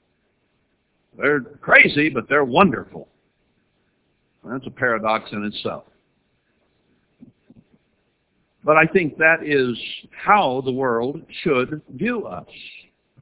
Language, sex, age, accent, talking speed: English, male, 60-79, American, 95 wpm